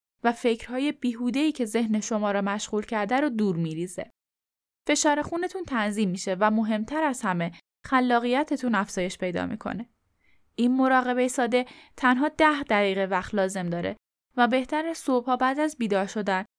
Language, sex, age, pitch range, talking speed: Persian, female, 10-29, 210-270 Hz, 145 wpm